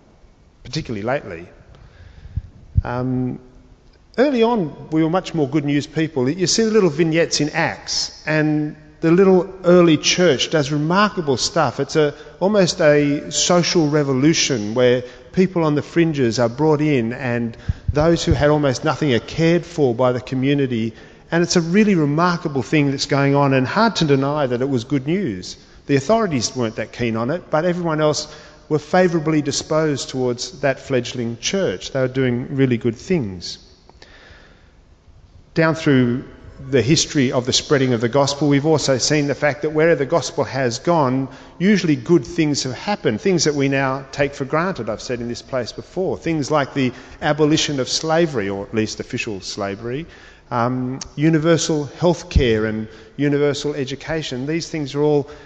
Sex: male